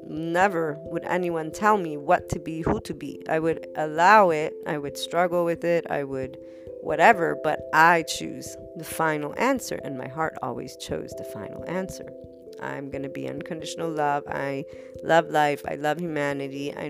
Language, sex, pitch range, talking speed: English, female, 130-165 Hz, 180 wpm